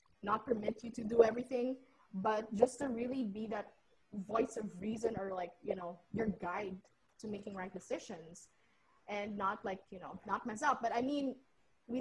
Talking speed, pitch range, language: 185 wpm, 200-245 Hz, English